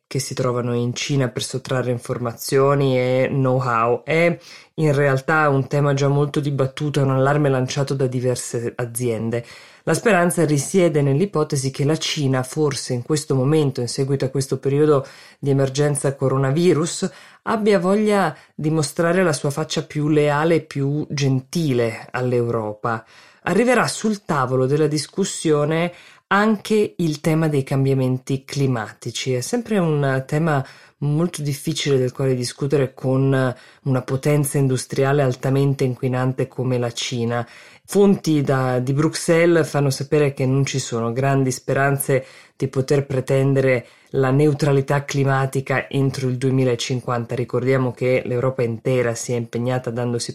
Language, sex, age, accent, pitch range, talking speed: Italian, female, 20-39, native, 130-150 Hz, 135 wpm